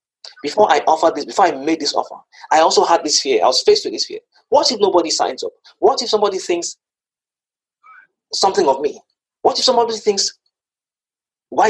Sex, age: male, 30-49